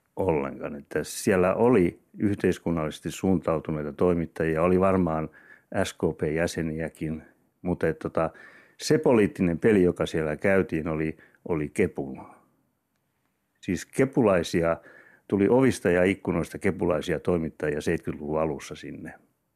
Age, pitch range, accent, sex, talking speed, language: 60-79, 80-100 Hz, native, male, 100 wpm, Finnish